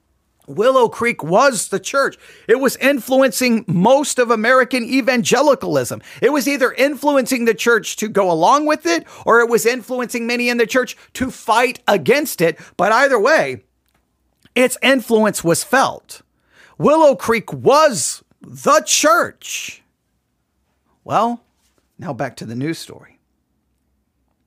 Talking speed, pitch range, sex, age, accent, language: 130 wpm, 175-265 Hz, male, 40-59, American, English